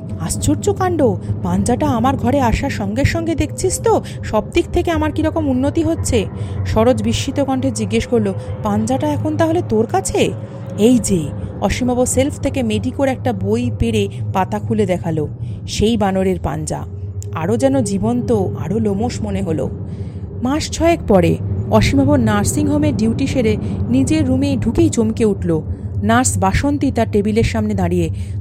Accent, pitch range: native, 100-130 Hz